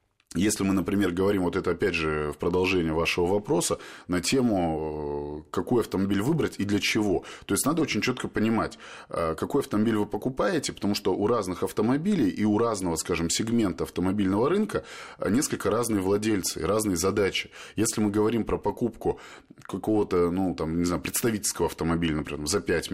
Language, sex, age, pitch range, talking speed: Russian, male, 20-39, 85-110 Hz, 160 wpm